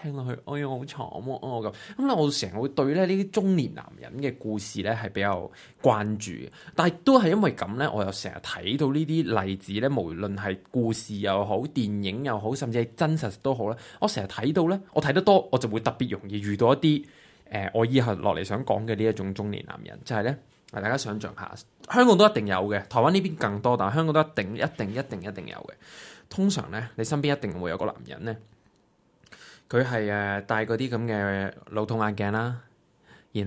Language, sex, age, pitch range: Chinese, male, 20-39, 100-135 Hz